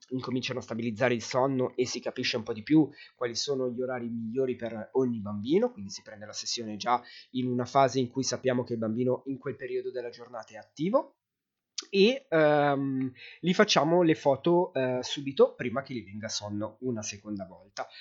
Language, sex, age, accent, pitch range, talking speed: Italian, male, 30-49, native, 120-155 Hz, 195 wpm